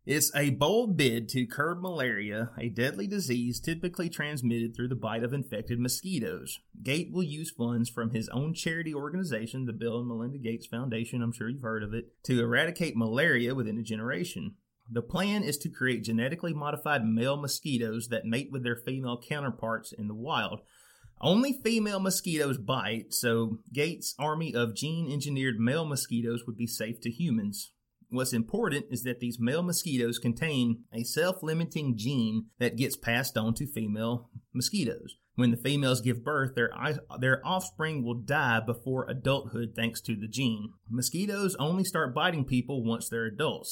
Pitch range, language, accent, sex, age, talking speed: 115-145 Hz, English, American, male, 30-49, 165 wpm